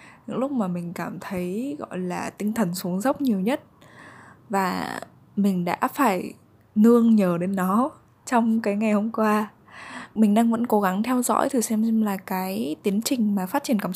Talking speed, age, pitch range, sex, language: 195 wpm, 10-29, 185-230 Hz, female, Vietnamese